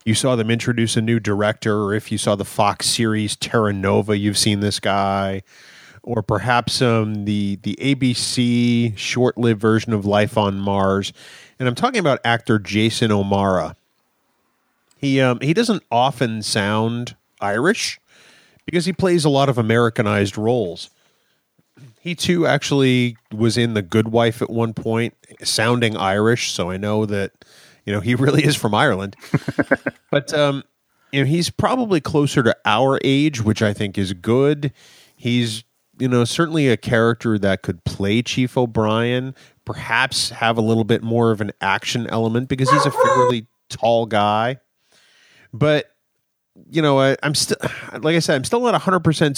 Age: 30-49